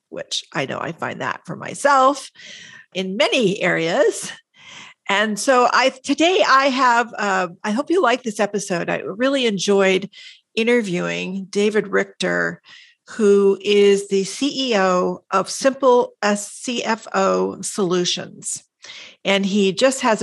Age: 50-69